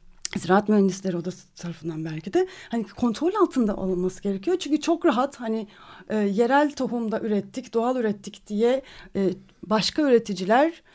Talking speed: 135 wpm